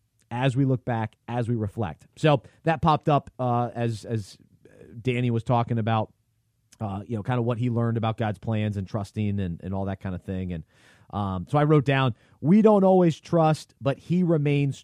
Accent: American